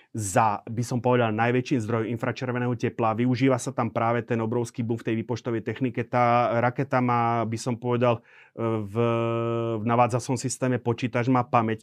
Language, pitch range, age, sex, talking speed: Slovak, 110-130 Hz, 30-49, male, 155 wpm